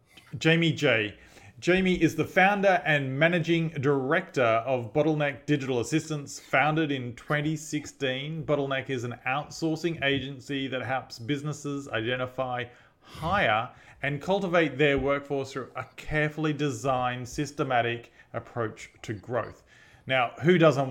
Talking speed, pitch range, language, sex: 120 wpm, 120-150 Hz, English, male